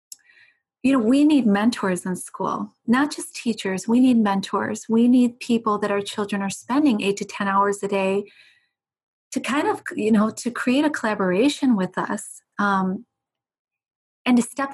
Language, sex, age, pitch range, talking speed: English, female, 30-49, 205-255 Hz, 170 wpm